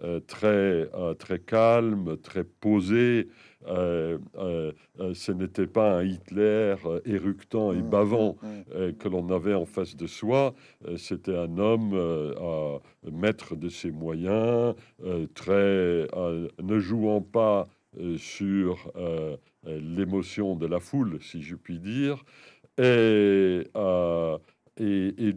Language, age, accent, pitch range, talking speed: French, 60-79, French, 85-110 Hz, 130 wpm